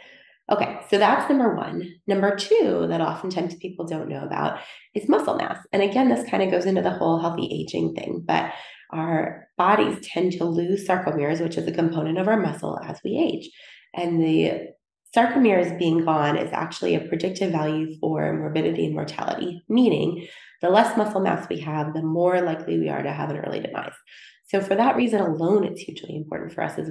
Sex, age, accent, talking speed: female, 20-39, American, 195 wpm